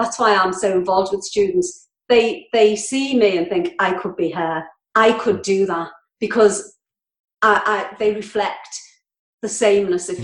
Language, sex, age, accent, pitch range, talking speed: English, female, 40-59, British, 185-245 Hz, 170 wpm